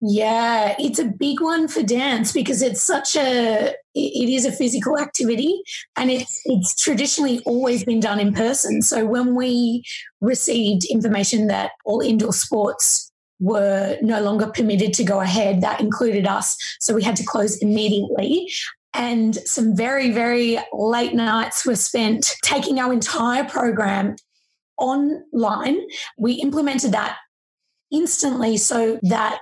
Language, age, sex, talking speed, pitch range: English, 20-39, female, 140 wpm, 215-275 Hz